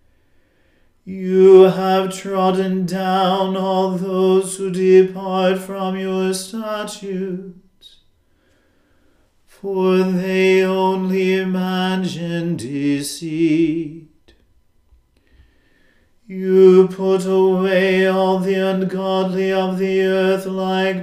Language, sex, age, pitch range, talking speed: English, male, 40-59, 165-190 Hz, 75 wpm